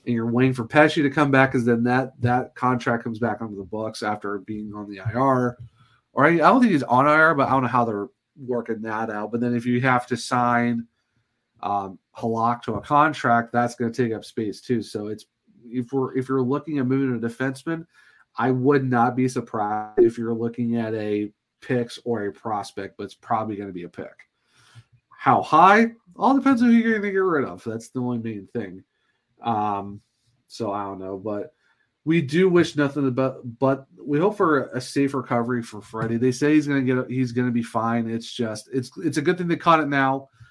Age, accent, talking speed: 40-59, American, 225 wpm